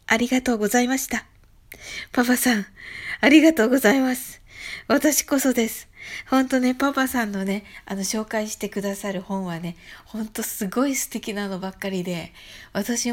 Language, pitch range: Japanese, 195-255 Hz